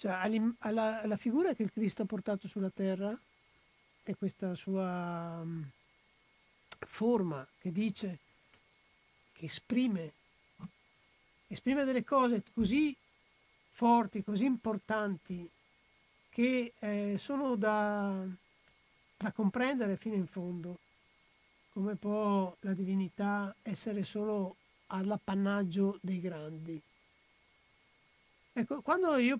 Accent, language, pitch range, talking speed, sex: native, Italian, 185-235 Hz, 100 wpm, male